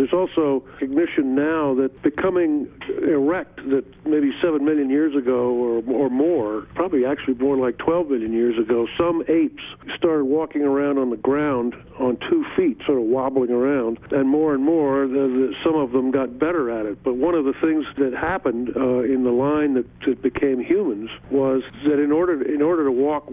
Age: 50-69